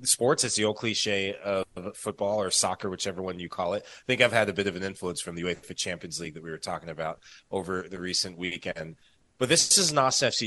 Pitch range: 100-130 Hz